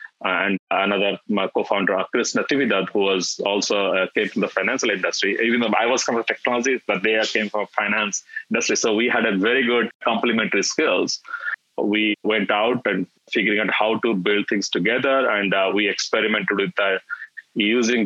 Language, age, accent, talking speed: English, 20-39, Indian, 185 wpm